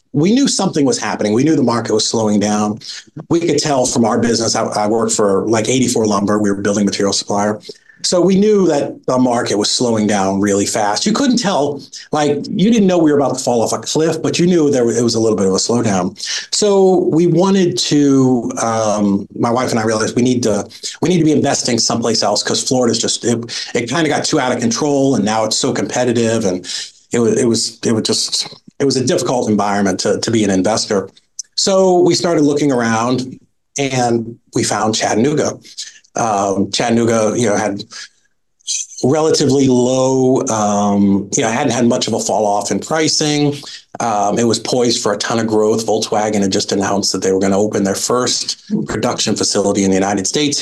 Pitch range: 105-145 Hz